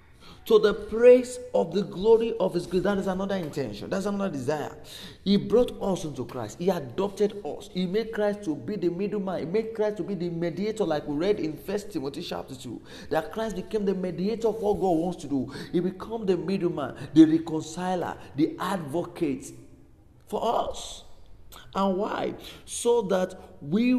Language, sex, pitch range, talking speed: English, male, 160-220 Hz, 185 wpm